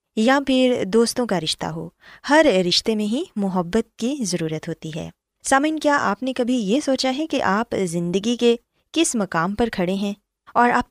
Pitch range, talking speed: 185-260 Hz, 185 wpm